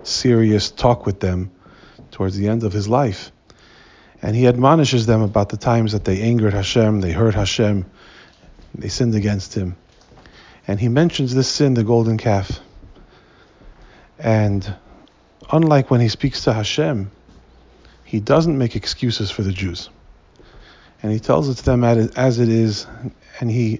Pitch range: 100-125 Hz